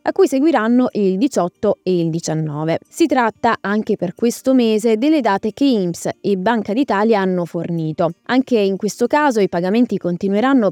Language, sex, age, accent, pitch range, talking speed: Italian, female, 20-39, native, 180-250 Hz, 170 wpm